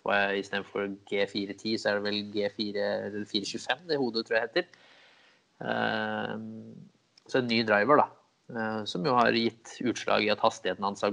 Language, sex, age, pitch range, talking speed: English, male, 20-39, 100-110 Hz, 160 wpm